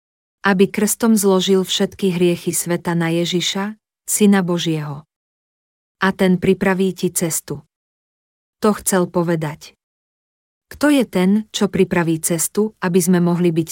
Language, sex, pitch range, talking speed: Slovak, female, 170-195 Hz, 120 wpm